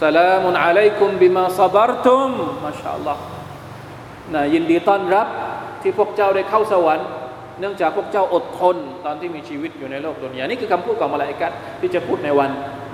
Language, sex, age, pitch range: Thai, male, 20-39, 140-190 Hz